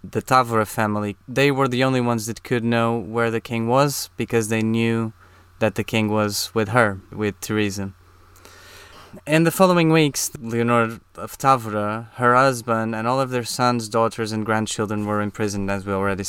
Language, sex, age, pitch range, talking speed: English, male, 20-39, 105-130 Hz, 175 wpm